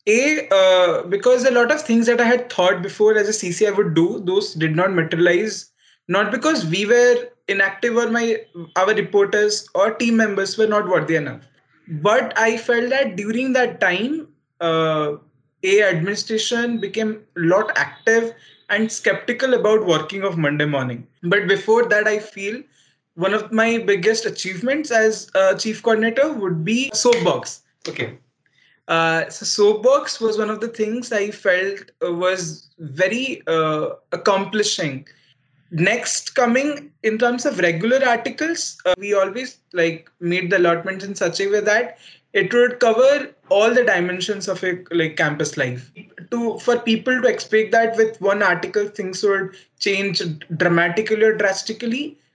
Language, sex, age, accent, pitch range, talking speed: English, male, 20-39, Indian, 180-230 Hz, 155 wpm